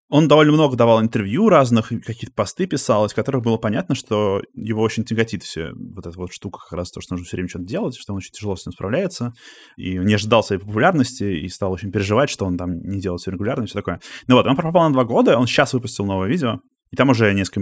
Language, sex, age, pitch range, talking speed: Russian, male, 20-39, 95-125 Hz, 250 wpm